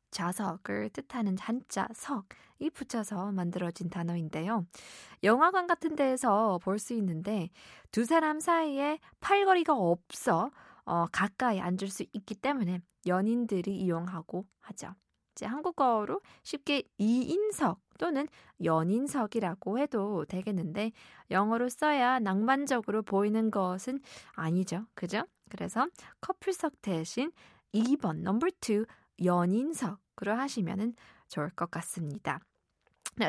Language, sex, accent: Korean, female, native